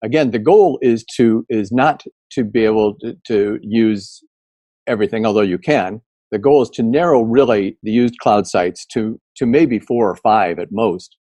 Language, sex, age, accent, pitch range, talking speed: English, male, 50-69, American, 100-120 Hz, 185 wpm